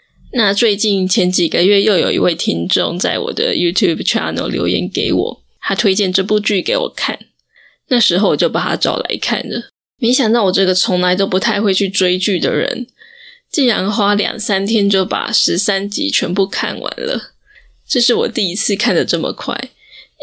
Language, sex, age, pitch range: Chinese, female, 10-29, 185-230 Hz